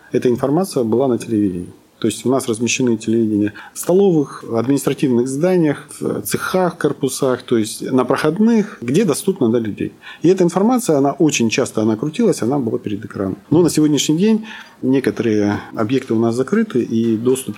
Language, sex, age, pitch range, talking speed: Russian, male, 40-59, 110-145 Hz, 175 wpm